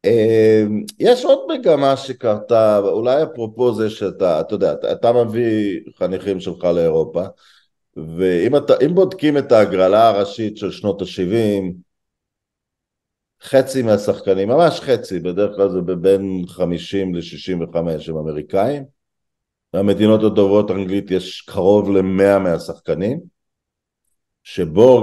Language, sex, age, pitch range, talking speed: Hebrew, male, 50-69, 90-115 Hz, 110 wpm